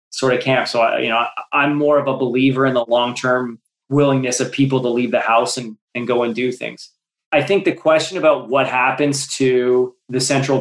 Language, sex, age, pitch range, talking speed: English, male, 20-39, 125-150 Hz, 210 wpm